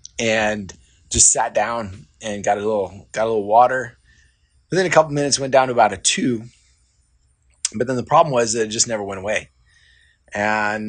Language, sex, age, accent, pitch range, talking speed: English, male, 30-49, American, 95-115 Hz, 195 wpm